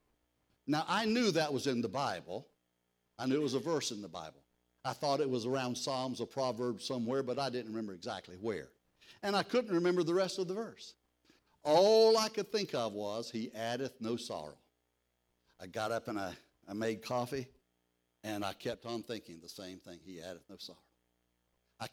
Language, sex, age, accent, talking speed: English, male, 60-79, American, 195 wpm